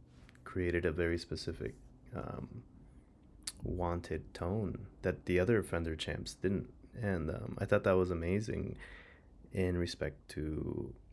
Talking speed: 130 wpm